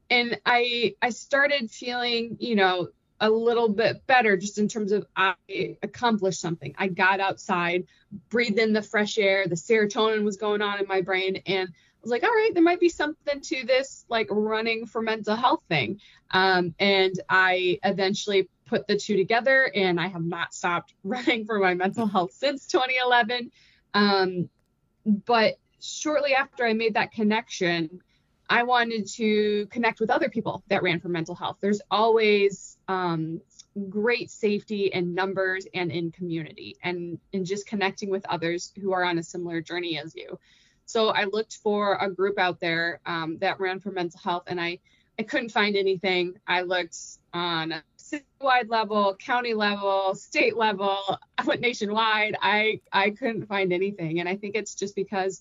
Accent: American